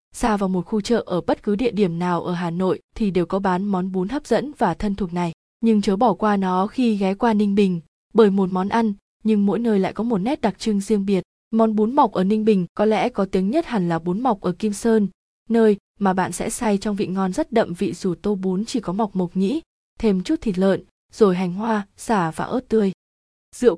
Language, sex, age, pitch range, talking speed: Vietnamese, female, 20-39, 185-225 Hz, 250 wpm